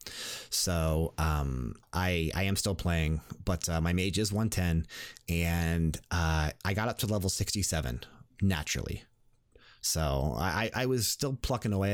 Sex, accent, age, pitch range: male, American, 30-49, 80-110 Hz